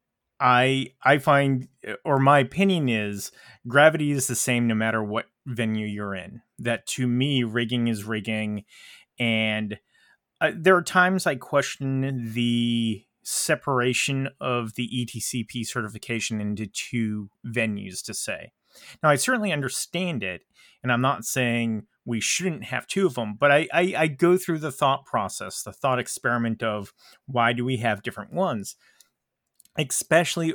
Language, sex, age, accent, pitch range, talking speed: English, male, 30-49, American, 115-140 Hz, 150 wpm